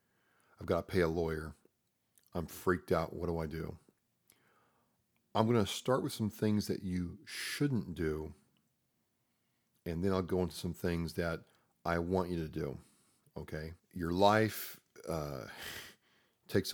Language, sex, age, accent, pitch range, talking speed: English, male, 40-59, American, 85-95 Hz, 150 wpm